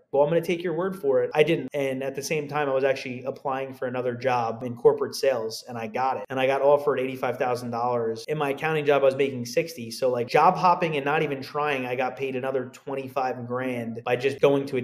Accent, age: American, 30-49